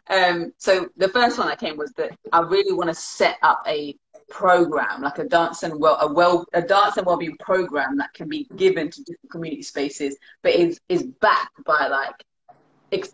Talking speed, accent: 200 wpm, British